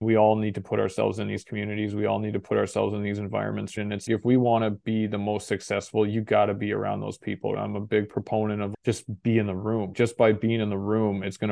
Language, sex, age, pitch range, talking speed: English, male, 20-39, 105-115 Hz, 275 wpm